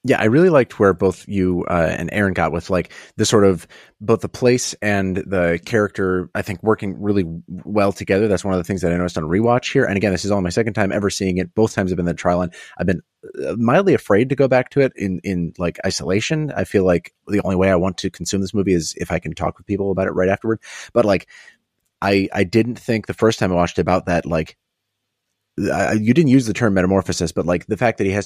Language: English